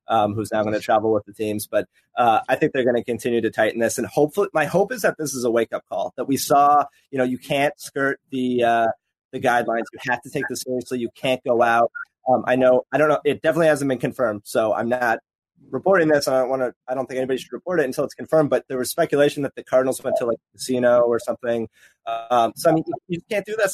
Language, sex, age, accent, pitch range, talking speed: English, male, 30-49, American, 125-160 Hz, 270 wpm